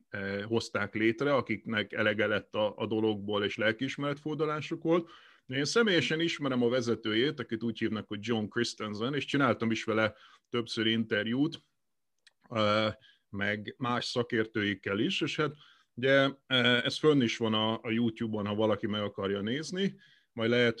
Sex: male